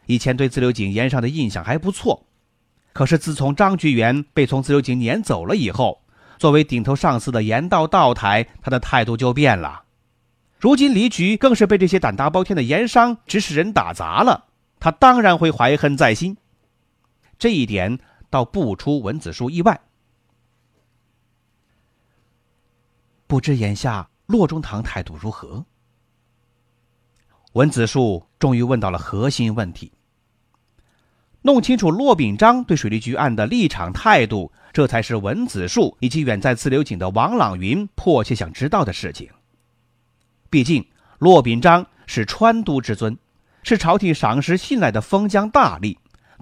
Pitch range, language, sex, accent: 120-160 Hz, Chinese, male, native